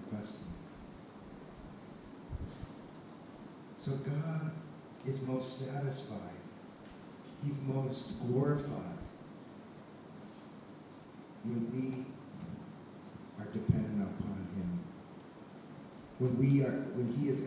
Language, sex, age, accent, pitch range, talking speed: English, male, 50-69, American, 110-135 Hz, 70 wpm